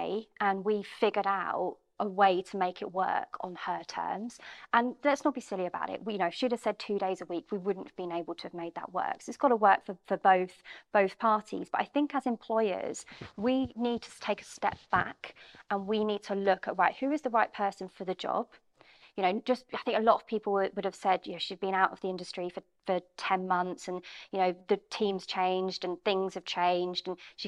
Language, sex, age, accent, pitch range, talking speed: English, female, 30-49, British, 185-220 Hz, 250 wpm